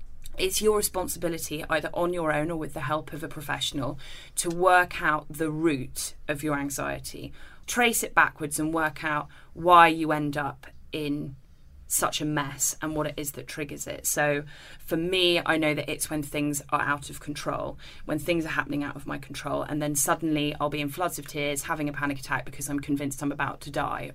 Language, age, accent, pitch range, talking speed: English, 20-39, British, 145-160 Hz, 210 wpm